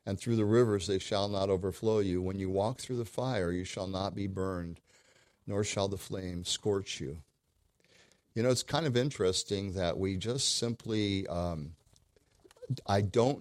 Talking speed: 175 wpm